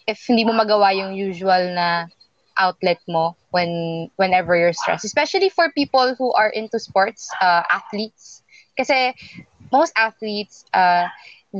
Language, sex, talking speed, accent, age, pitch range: English, female, 140 wpm, Filipino, 20-39, 180-230 Hz